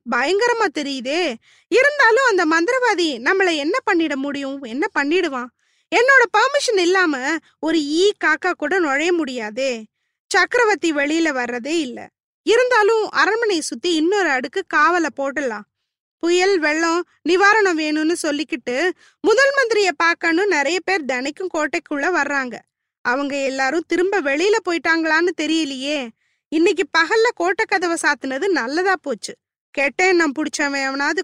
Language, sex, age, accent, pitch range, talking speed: Tamil, female, 20-39, native, 280-380 Hz, 115 wpm